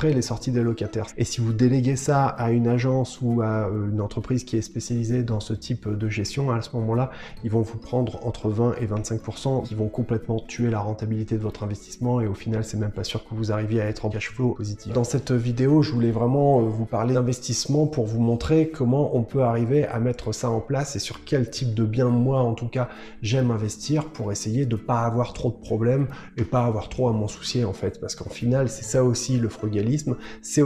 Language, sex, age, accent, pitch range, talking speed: French, male, 20-39, French, 110-130 Hz, 235 wpm